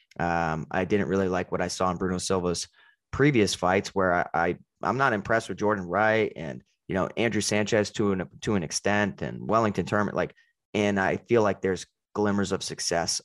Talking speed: 200 wpm